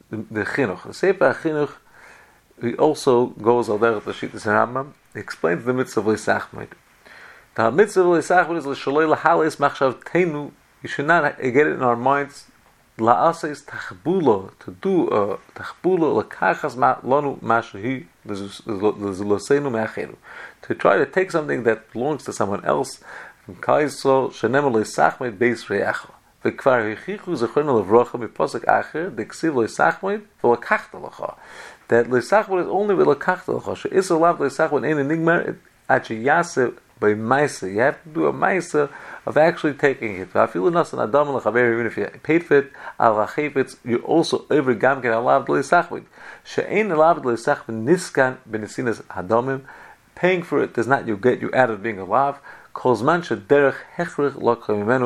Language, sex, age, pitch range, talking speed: English, male, 40-59, 115-160 Hz, 105 wpm